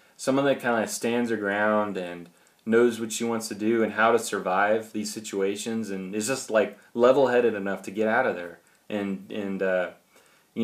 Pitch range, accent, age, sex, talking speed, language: 105-120 Hz, American, 20-39, male, 195 wpm, English